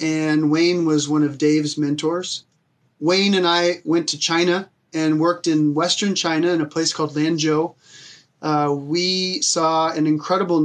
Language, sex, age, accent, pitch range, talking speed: English, male, 30-49, American, 150-165 Hz, 160 wpm